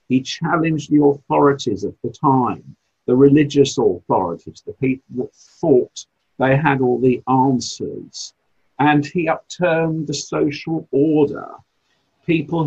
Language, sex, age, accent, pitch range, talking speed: English, male, 50-69, British, 125-175 Hz, 125 wpm